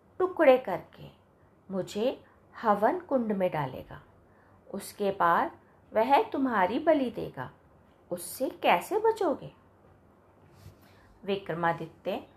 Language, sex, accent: Hindi, female, native